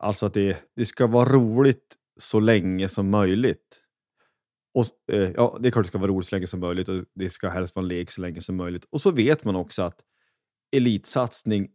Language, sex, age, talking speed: Swedish, male, 30-49, 210 wpm